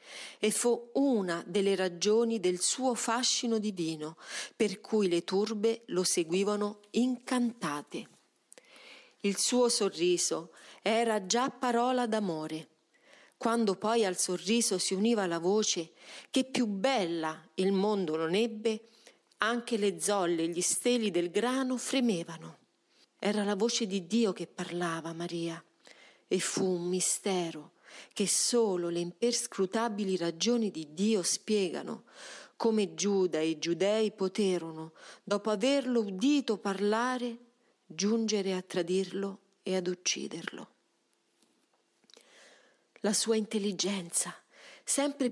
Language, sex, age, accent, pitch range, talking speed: Italian, female, 40-59, native, 180-230 Hz, 115 wpm